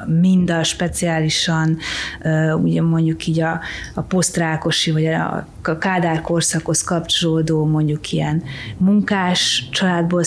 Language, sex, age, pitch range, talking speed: Hungarian, female, 30-49, 160-180 Hz, 105 wpm